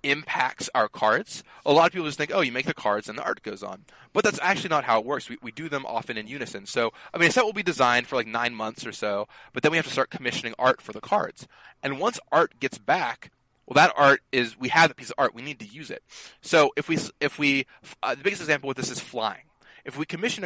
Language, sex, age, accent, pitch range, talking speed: English, male, 20-39, American, 110-145 Hz, 275 wpm